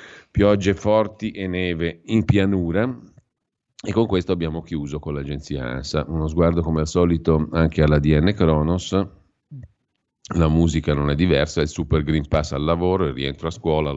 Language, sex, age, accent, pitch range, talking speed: Italian, male, 40-59, native, 70-85 Hz, 165 wpm